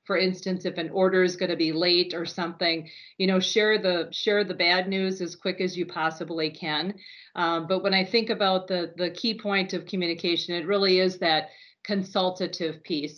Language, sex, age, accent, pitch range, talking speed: English, female, 40-59, American, 175-200 Hz, 200 wpm